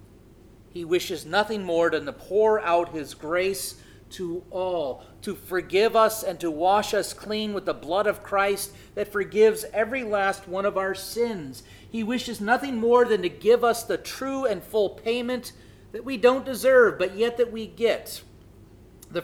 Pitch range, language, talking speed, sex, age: 155-220 Hz, English, 175 wpm, male, 40-59